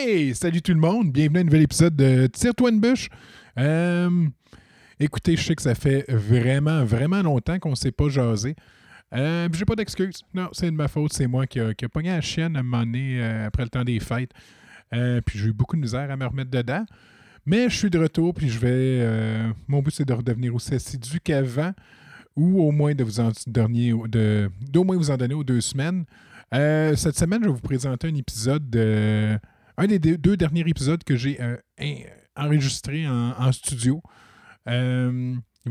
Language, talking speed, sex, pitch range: French, 210 wpm, male, 120-155 Hz